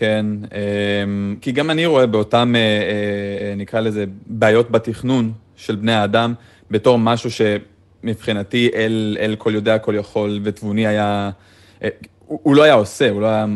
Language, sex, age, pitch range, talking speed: Hebrew, male, 30-49, 100-120 Hz, 135 wpm